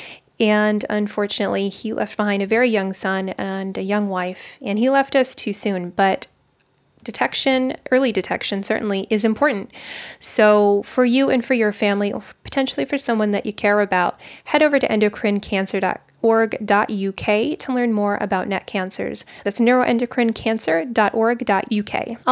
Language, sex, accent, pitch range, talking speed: English, female, American, 205-245 Hz, 140 wpm